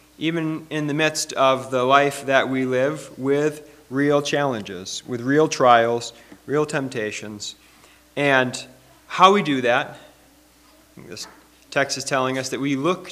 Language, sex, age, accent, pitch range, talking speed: English, male, 30-49, American, 125-155 Hz, 140 wpm